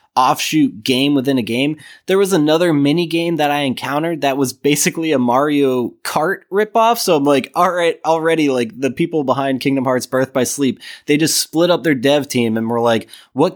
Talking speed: 205 wpm